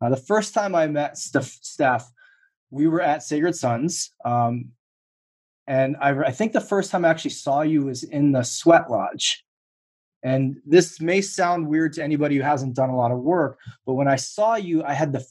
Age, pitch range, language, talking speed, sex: 20-39, 125-165 Hz, English, 205 wpm, male